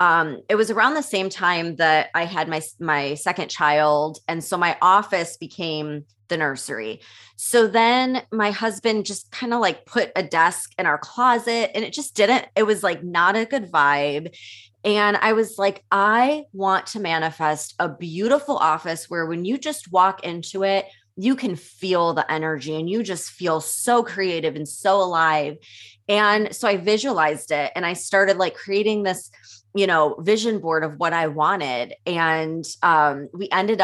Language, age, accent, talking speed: English, 20-39, American, 180 wpm